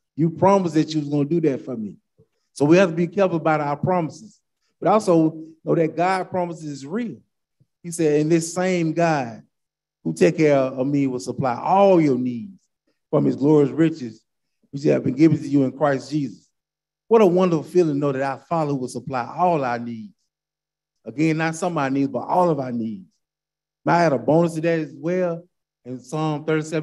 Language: English